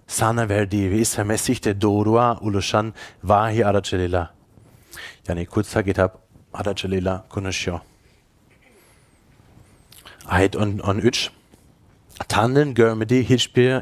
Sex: male